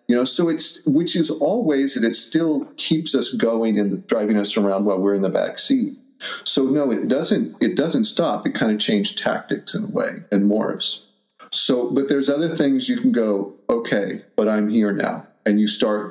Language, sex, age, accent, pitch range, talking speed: English, male, 40-59, American, 100-140 Hz, 205 wpm